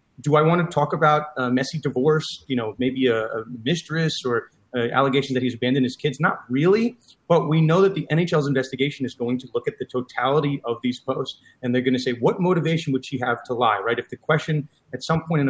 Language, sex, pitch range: English, male, 125-160 Hz